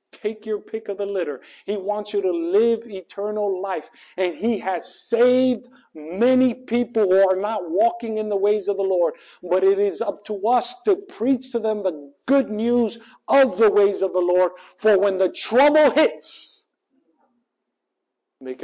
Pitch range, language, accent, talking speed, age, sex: 145-225 Hz, English, American, 175 wpm, 50-69, male